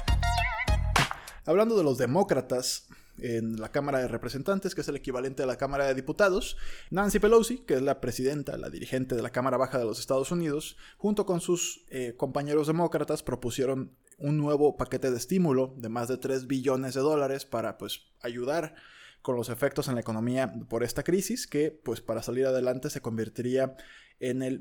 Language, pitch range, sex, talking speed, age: Spanish, 125-145 Hz, male, 175 wpm, 20-39